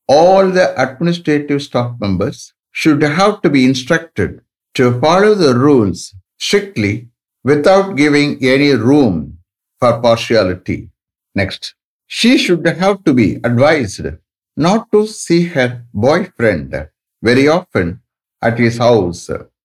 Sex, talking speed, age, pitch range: male, 115 wpm, 60-79, 110-170 Hz